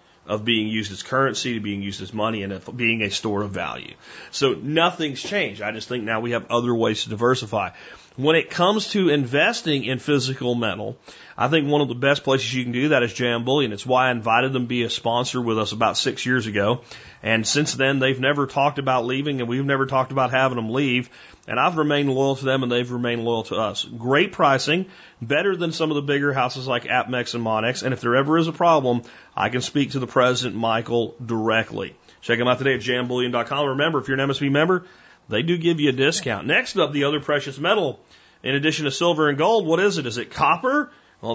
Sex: male